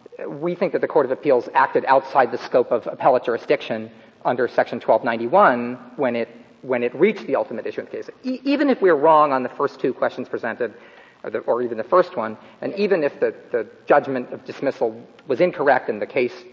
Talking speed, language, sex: 220 wpm, English, male